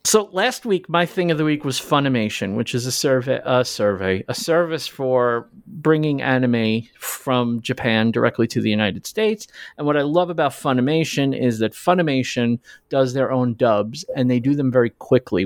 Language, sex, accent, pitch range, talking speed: English, male, American, 115-145 Hz, 185 wpm